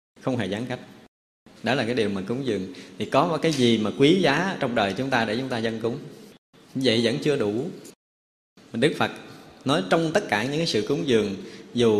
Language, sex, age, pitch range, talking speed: Vietnamese, male, 20-39, 110-155 Hz, 215 wpm